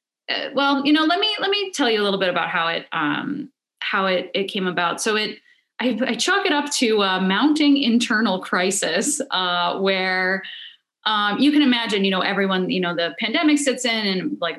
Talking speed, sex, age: 205 wpm, female, 20-39